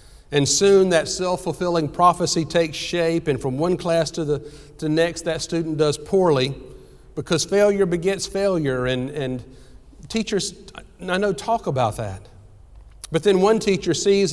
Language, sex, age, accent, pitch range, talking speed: English, male, 50-69, American, 120-175 Hz, 150 wpm